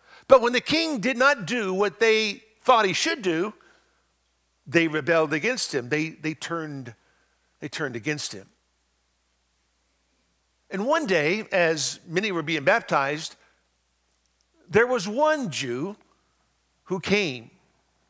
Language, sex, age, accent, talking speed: English, male, 60-79, American, 120 wpm